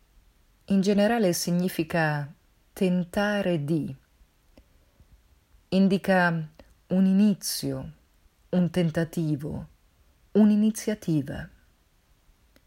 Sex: female